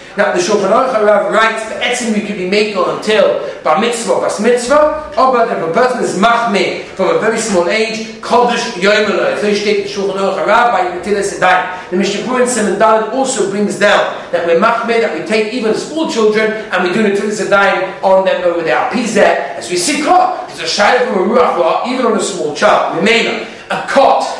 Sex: male